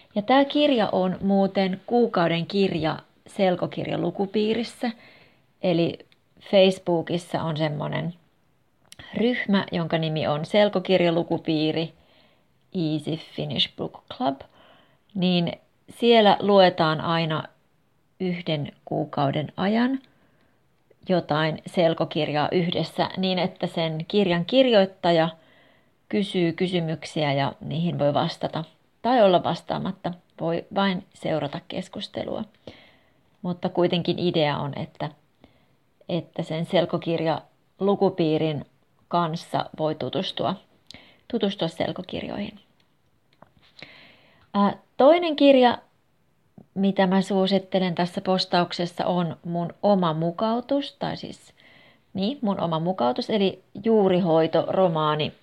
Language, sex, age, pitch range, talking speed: Finnish, female, 30-49, 160-195 Hz, 90 wpm